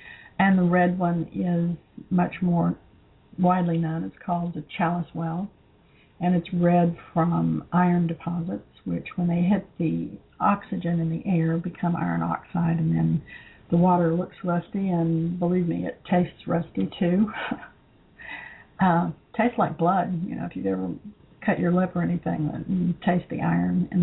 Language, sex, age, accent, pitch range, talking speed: English, female, 60-79, American, 165-185 Hz, 160 wpm